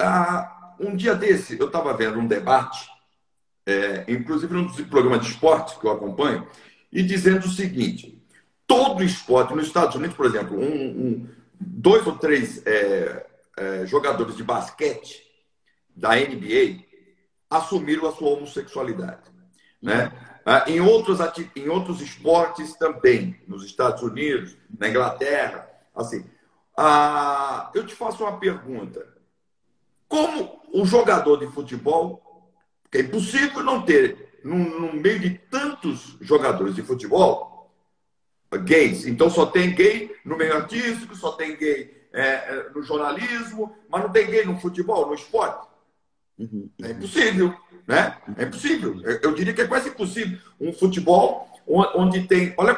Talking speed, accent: 140 wpm, Brazilian